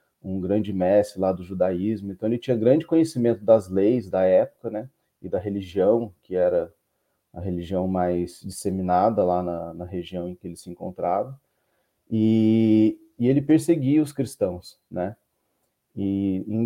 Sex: male